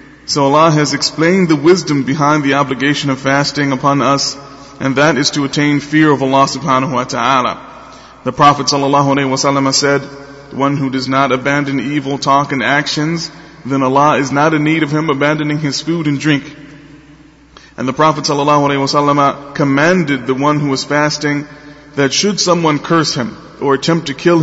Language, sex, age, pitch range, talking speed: English, male, 30-49, 140-155 Hz, 185 wpm